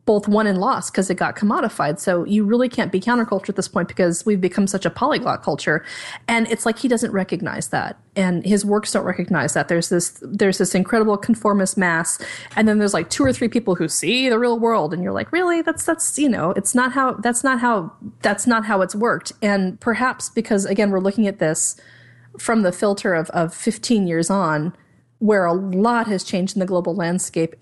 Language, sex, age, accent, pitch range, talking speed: English, female, 30-49, American, 175-215 Hz, 220 wpm